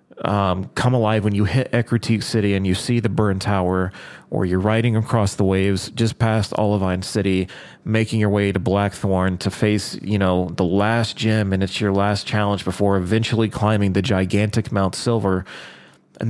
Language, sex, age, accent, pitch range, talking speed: English, male, 30-49, American, 95-115 Hz, 180 wpm